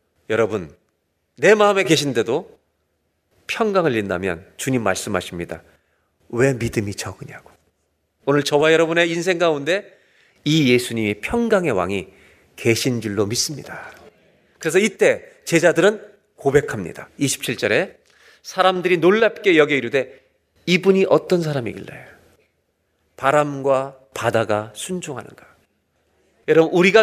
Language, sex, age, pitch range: Korean, male, 40-59, 120-190 Hz